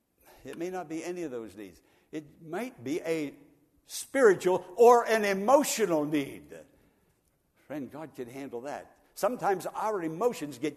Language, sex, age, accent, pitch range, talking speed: English, male, 60-79, American, 145-215 Hz, 145 wpm